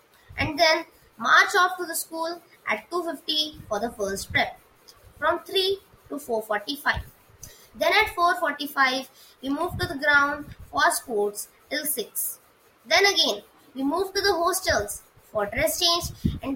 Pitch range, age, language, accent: 255-350 Hz, 20-39, English, Indian